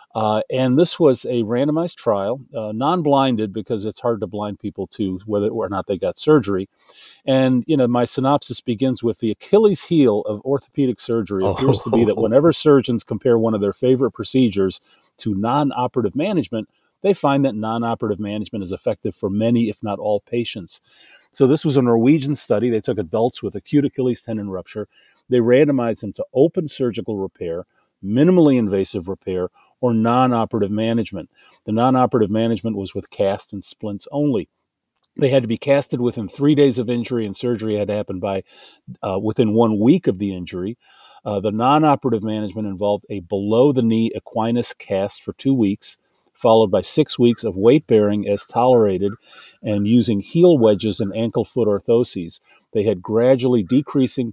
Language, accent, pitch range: English, American, 105-130 Hz